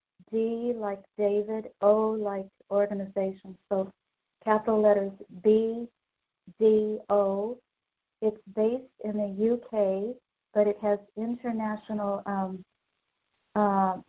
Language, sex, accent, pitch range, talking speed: English, female, American, 200-220 Hz, 100 wpm